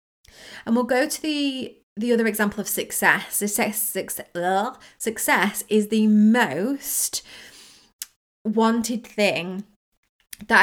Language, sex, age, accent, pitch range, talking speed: English, female, 30-49, British, 185-220 Hz, 115 wpm